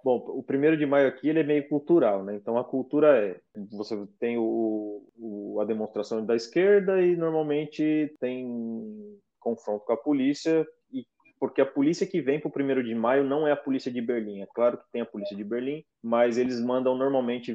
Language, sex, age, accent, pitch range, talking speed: Portuguese, male, 20-39, Brazilian, 110-140 Hz, 190 wpm